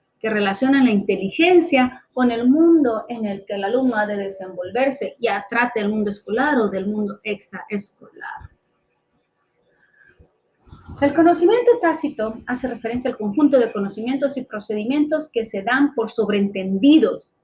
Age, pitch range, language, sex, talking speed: 30-49, 210-280 Hz, Spanish, female, 140 wpm